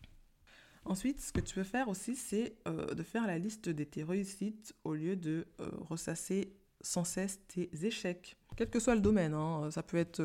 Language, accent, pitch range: French, French, 160-195 Hz